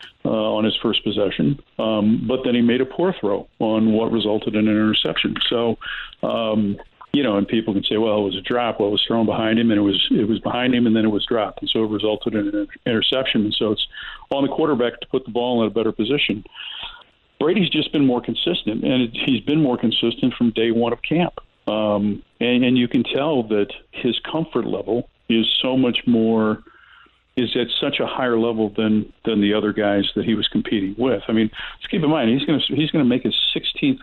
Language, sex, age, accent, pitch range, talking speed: English, male, 50-69, American, 110-125 Hz, 230 wpm